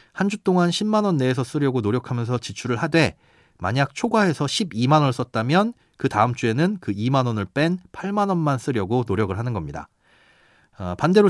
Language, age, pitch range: Korean, 30-49, 110-170 Hz